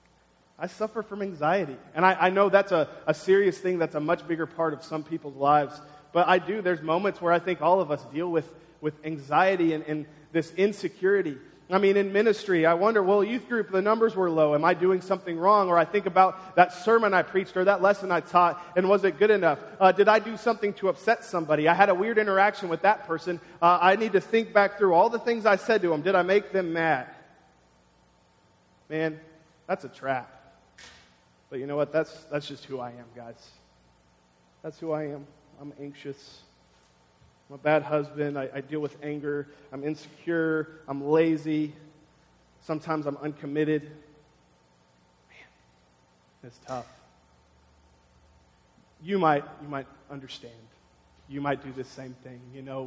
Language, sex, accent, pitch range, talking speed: English, male, American, 140-185 Hz, 185 wpm